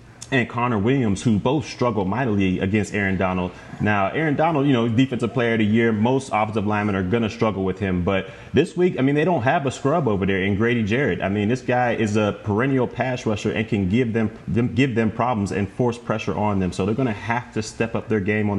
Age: 30-49